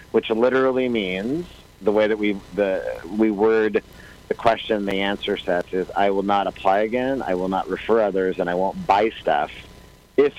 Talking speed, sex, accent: 190 wpm, male, American